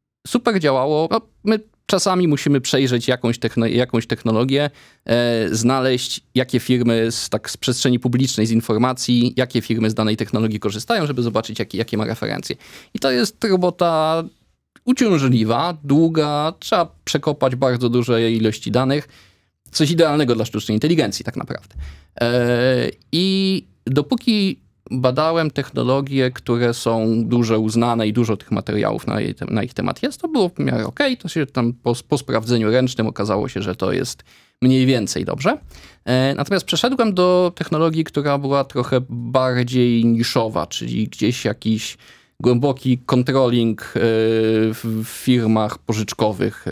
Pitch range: 115-145 Hz